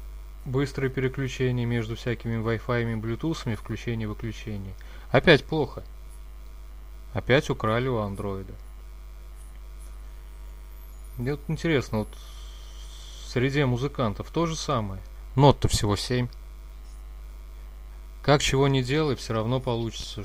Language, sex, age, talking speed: Russian, male, 20-39, 105 wpm